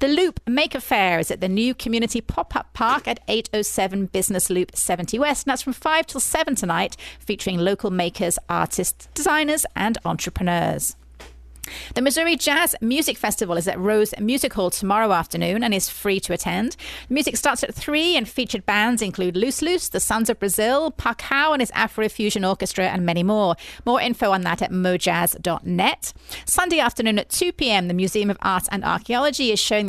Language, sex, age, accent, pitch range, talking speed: English, female, 30-49, British, 185-250 Hz, 185 wpm